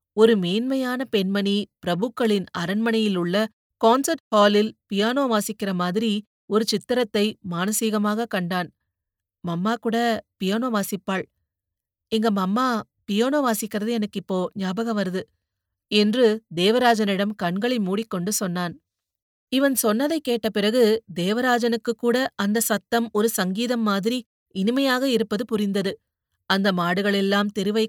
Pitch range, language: 190-235 Hz, Tamil